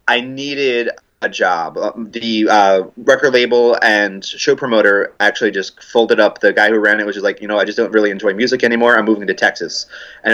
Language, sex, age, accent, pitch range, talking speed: English, male, 30-49, American, 110-130 Hz, 215 wpm